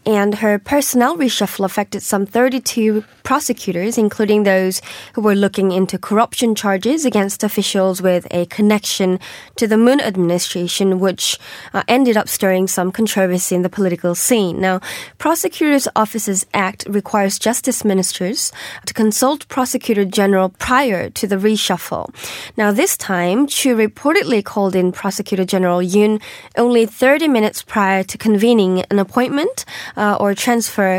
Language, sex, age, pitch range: Korean, female, 20-39, 190-235 Hz